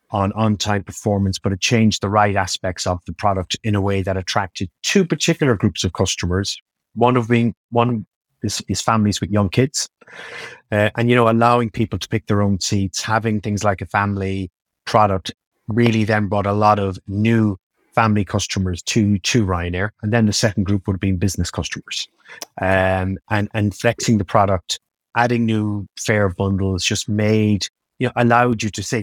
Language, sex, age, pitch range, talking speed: English, male, 30-49, 95-115 Hz, 185 wpm